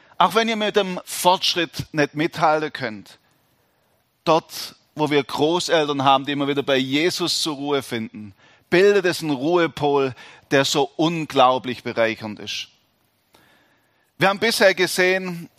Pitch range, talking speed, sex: 130-170 Hz, 135 wpm, male